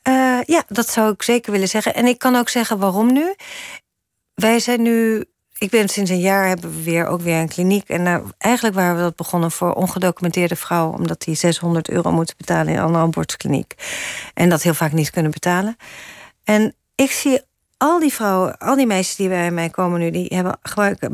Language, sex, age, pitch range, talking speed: Dutch, female, 40-59, 175-235 Hz, 205 wpm